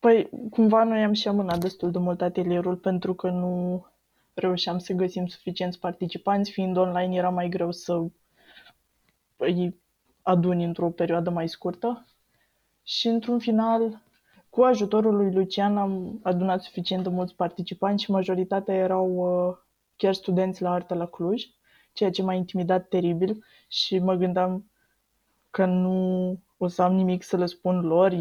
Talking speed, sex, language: 150 wpm, female, Romanian